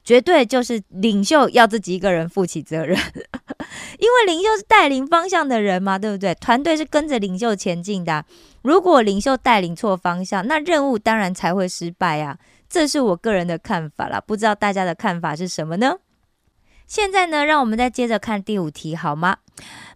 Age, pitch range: 20-39, 180-260 Hz